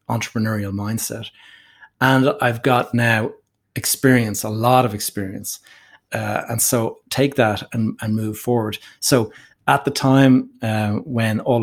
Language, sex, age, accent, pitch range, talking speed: English, male, 30-49, Irish, 105-120 Hz, 140 wpm